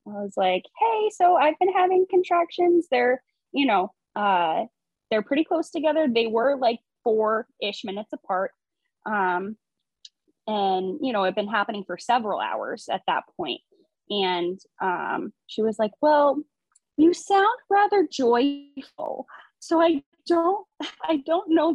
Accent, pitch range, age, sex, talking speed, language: American, 230-340 Hz, 10-29, female, 145 wpm, English